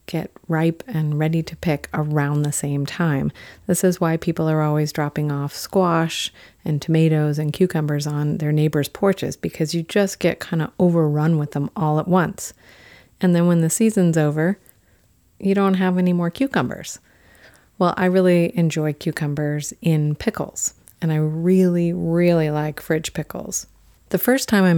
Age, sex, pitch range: 40-59, female, 150-180 Hz